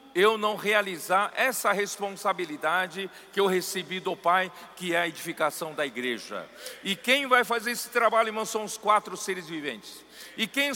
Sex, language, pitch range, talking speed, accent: male, Portuguese, 170-225 Hz, 165 wpm, Brazilian